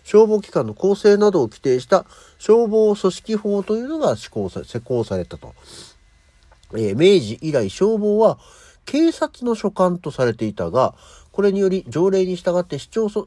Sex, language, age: male, Japanese, 50-69